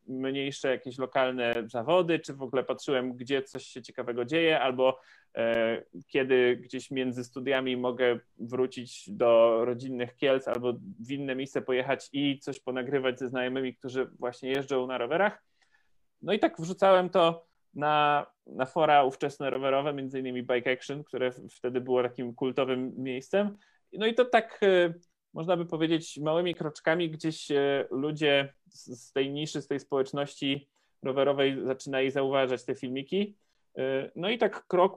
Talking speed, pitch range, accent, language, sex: 145 wpm, 130-155 Hz, native, Polish, male